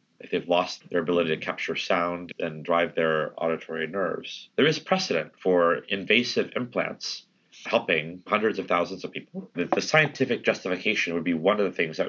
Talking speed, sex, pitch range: 175 wpm, male, 80-95 Hz